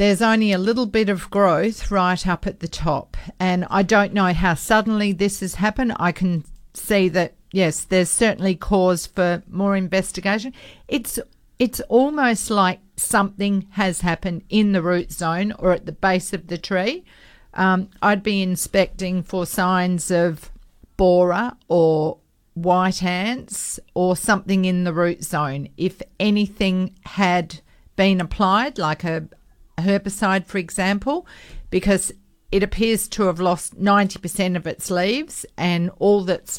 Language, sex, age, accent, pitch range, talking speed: English, female, 50-69, Australian, 175-200 Hz, 150 wpm